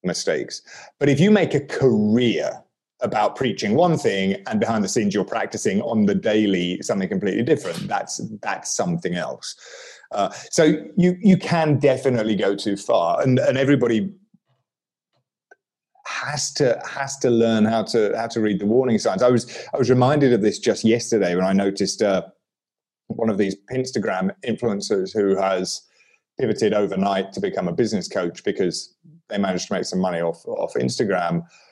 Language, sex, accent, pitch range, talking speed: English, male, British, 95-145 Hz, 170 wpm